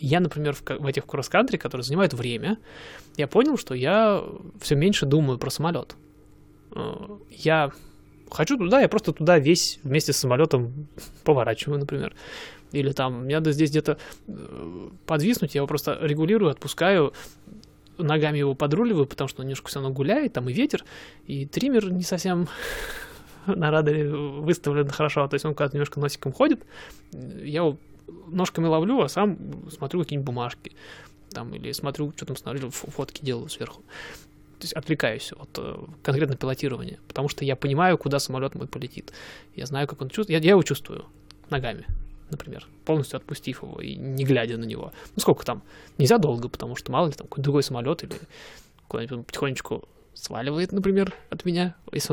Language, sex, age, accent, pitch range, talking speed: Russian, male, 20-39, native, 140-175 Hz, 165 wpm